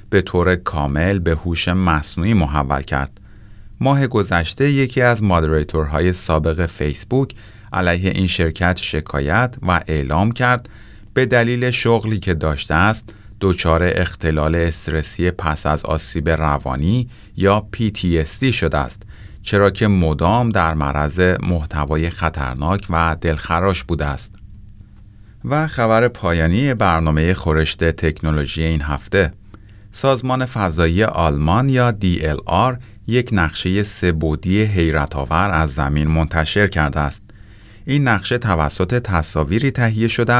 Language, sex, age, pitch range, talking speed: Persian, male, 30-49, 80-105 Hz, 120 wpm